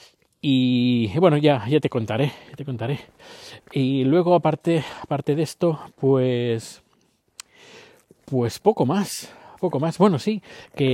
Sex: male